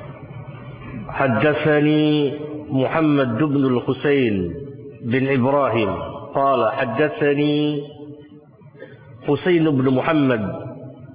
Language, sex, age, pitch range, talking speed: Indonesian, male, 50-69, 130-165 Hz, 60 wpm